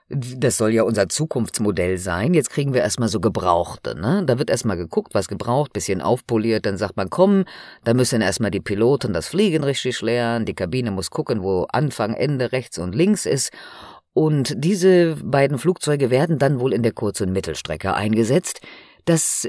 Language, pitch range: German, 105-155 Hz